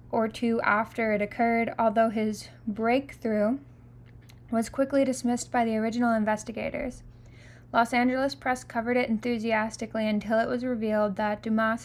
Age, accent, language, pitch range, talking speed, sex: 10-29, American, English, 200-235 Hz, 135 wpm, female